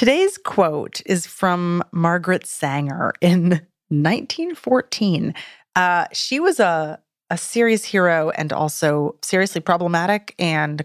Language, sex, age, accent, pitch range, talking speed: English, female, 30-49, American, 155-205 Hz, 110 wpm